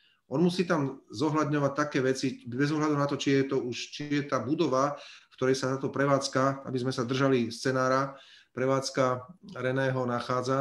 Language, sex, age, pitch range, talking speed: Slovak, male, 40-59, 115-135 Hz, 175 wpm